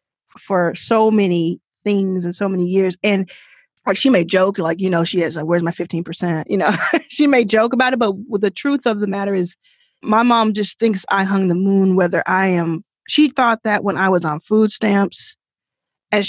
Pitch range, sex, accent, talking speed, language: 185-230 Hz, female, American, 210 wpm, English